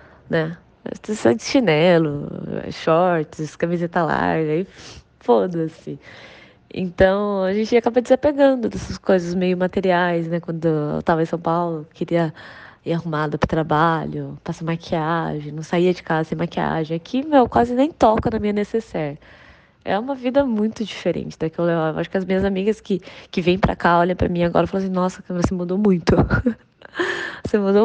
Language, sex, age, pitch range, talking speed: Portuguese, female, 20-39, 165-210 Hz, 170 wpm